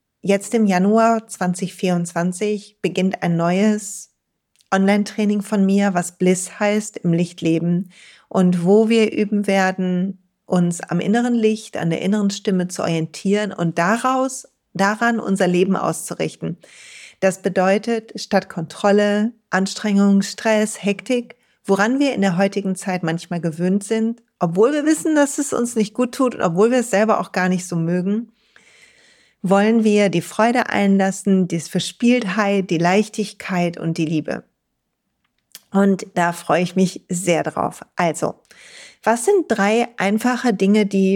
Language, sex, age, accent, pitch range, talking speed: German, female, 40-59, German, 185-220 Hz, 140 wpm